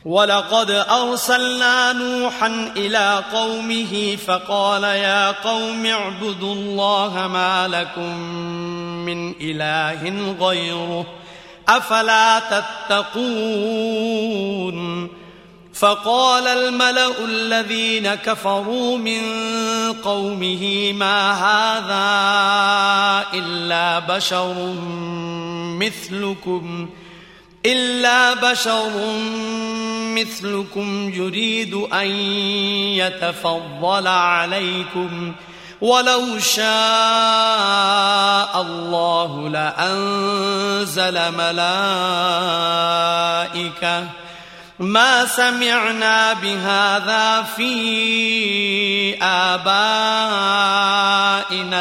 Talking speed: 50 wpm